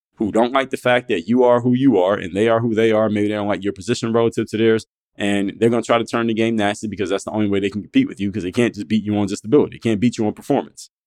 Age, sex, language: 20-39, male, English